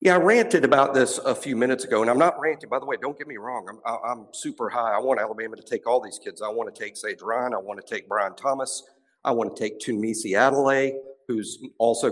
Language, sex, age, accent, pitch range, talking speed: English, male, 50-69, American, 115-150 Hz, 265 wpm